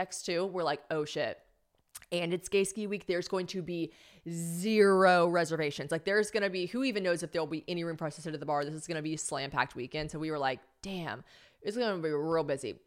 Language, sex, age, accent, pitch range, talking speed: English, female, 20-39, American, 170-255 Hz, 240 wpm